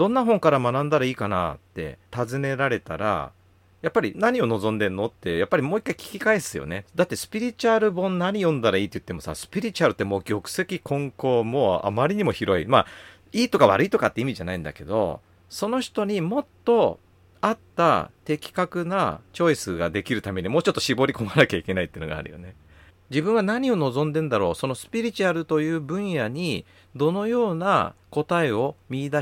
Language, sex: Japanese, male